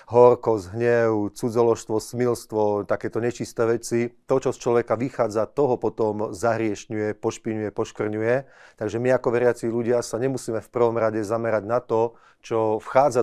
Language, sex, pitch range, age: Slovak, male, 110-120 Hz, 30-49